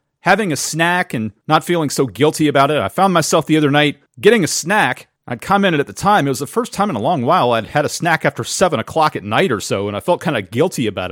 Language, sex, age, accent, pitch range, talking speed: English, male, 40-59, American, 135-175 Hz, 275 wpm